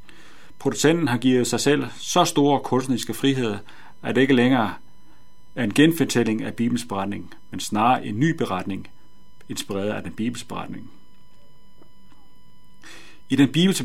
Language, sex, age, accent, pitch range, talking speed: Danish, male, 40-59, native, 105-135 Hz, 135 wpm